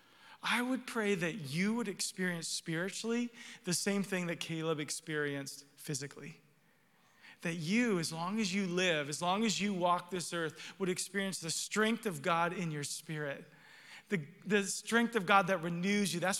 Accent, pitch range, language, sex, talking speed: American, 170-220 Hz, English, male, 170 wpm